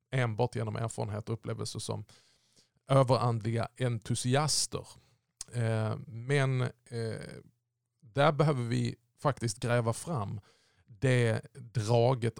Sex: male